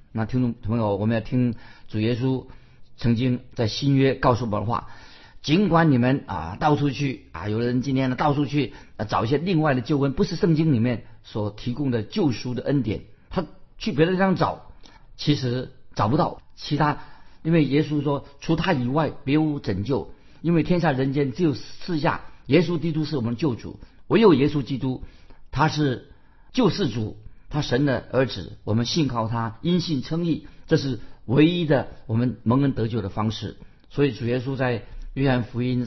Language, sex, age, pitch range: Chinese, male, 50-69, 110-145 Hz